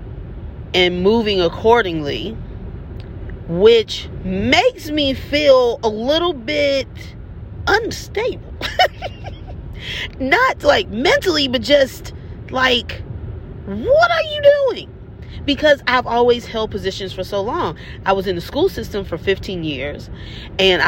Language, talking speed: English, 110 wpm